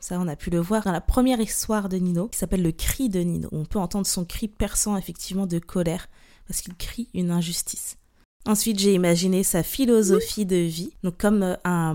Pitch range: 180-215 Hz